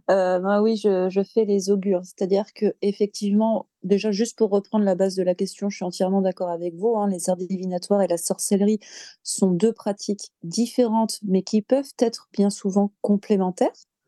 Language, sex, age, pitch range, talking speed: French, female, 30-49, 185-210 Hz, 185 wpm